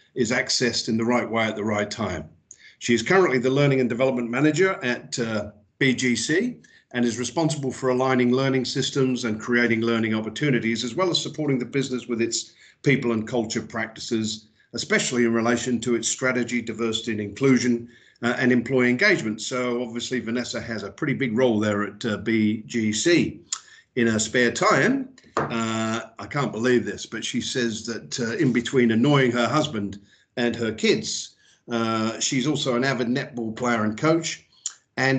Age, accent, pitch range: 50-69, British, 115-135 Hz